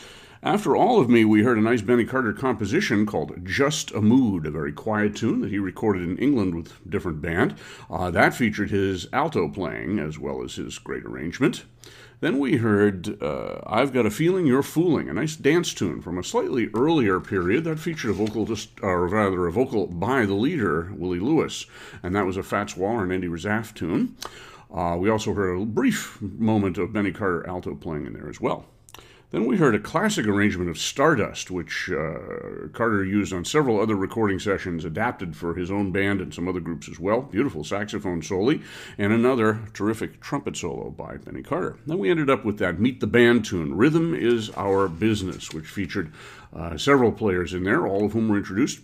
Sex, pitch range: male, 90-115 Hz